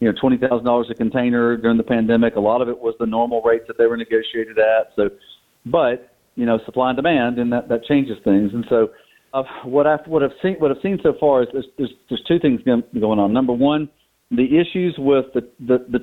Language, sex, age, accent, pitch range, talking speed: English, male, 50-69, American, 110-130 Hz, 230 wpm